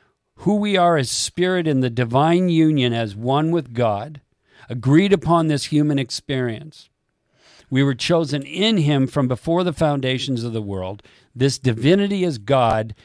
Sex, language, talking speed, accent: male, English, 155 wpm, American